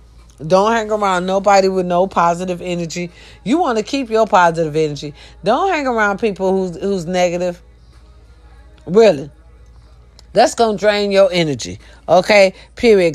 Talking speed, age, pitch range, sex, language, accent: 140 wpm, 40-59, 125-195 Hz, female, English, American